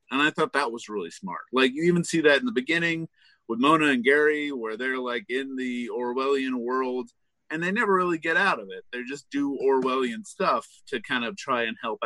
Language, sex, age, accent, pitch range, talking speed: English, male, 30-49, American, 115-165 Hz, 225 wpm